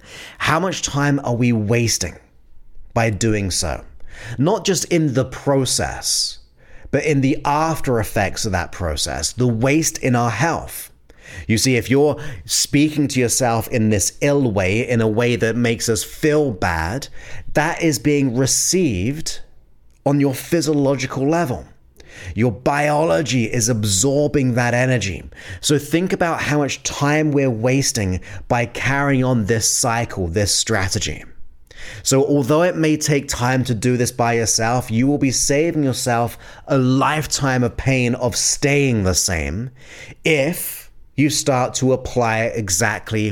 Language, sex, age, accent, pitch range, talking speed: English, male, 30-49, British, 105-140 Hz, 145 wpm